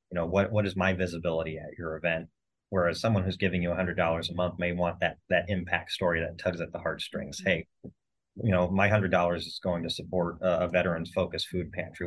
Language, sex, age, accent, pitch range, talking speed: English, male, 30-49, American, 85-95 Hz, 215 wpm